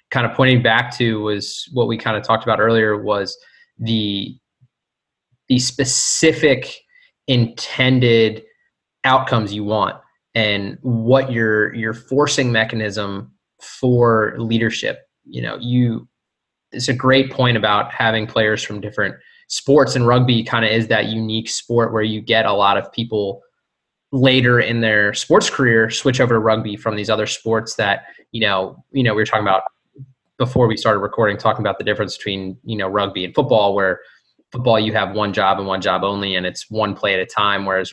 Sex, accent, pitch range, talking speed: male, American, 105-125 Hz, 175 wpm